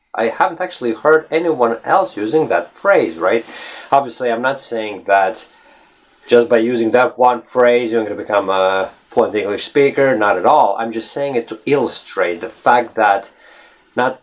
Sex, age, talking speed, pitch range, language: male, 30-49, 175 wpm, 110-140 Hz, English